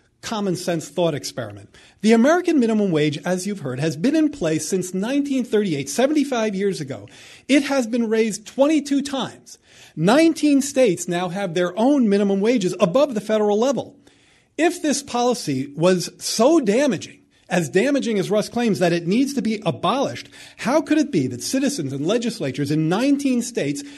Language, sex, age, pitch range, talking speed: English, male, 40-59, 165-250 Hz, 165 wpm